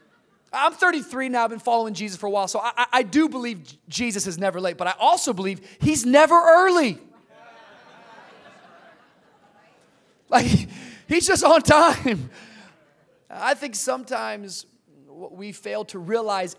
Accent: American